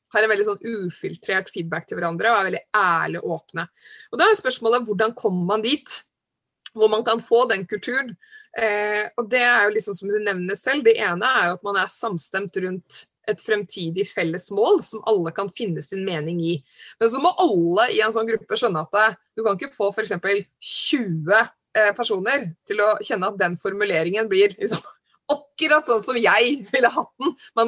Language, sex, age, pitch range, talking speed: English, female, 20-39, 185-230 Hz, 200 wpm